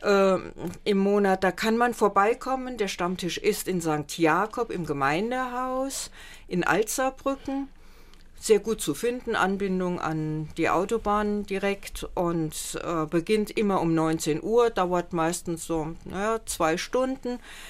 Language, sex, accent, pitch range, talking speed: German, female, German, 185-230 Hz, 125 wpm